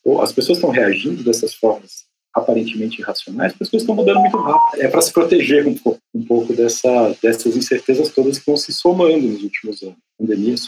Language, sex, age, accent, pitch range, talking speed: Portuguese, male, 40-59, Brazilian, 115-150 Hz, 195 wpm